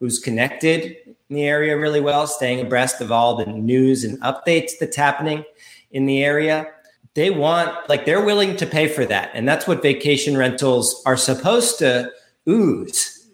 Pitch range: 120-155 Hz